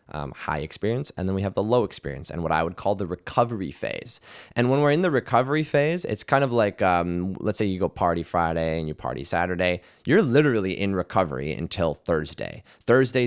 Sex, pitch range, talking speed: male, 85-120 Hz, 215 wpm